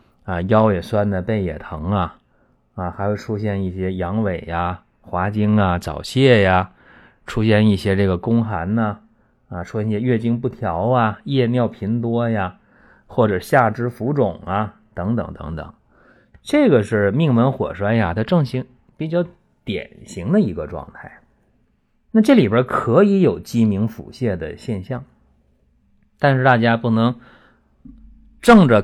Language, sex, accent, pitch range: Chinese, male, native, 90-130 Hz